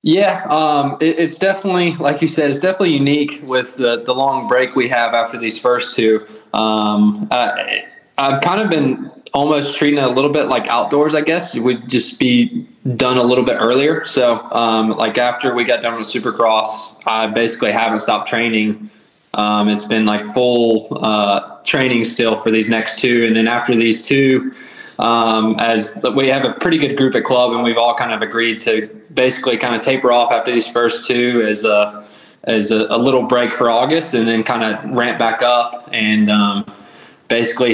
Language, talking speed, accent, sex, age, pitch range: English, 195 wpm, American, male, 20-39, 110-130 Hz